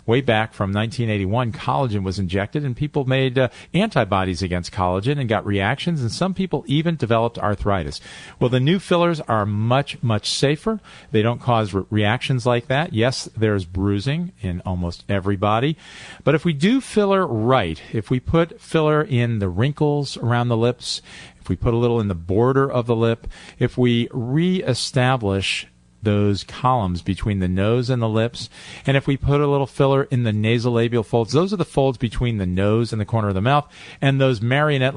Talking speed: 185 wpm